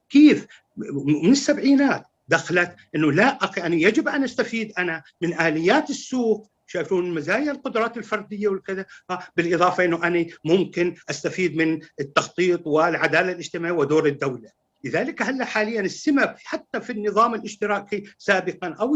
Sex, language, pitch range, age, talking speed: male, Arabic, 170-230 Hz, 50-69, 125 wpm